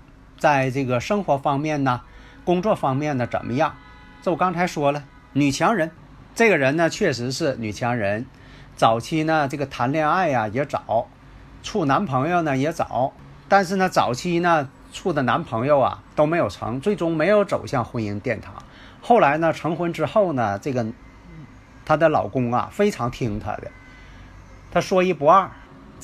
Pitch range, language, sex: 120-165 Hz, Chinese, male